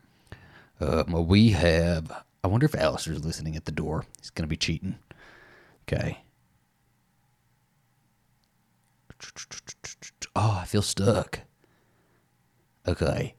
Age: 30-49